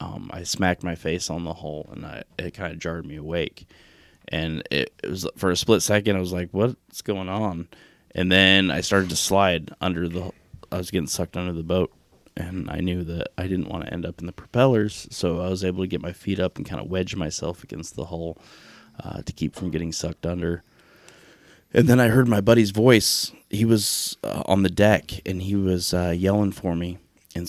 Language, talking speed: English, 225 wpm